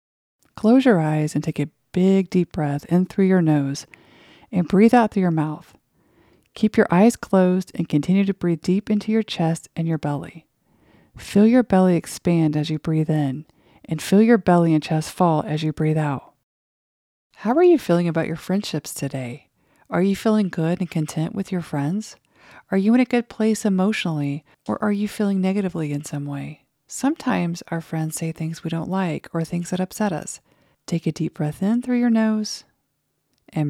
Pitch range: 155-205 Hz